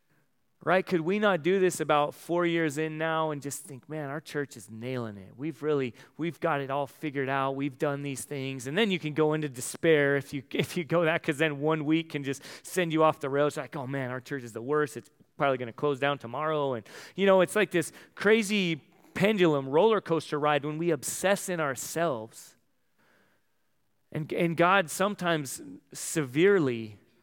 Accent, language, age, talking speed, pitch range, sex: American, English, 30-49, 205 wpm, 130-165 Hz, male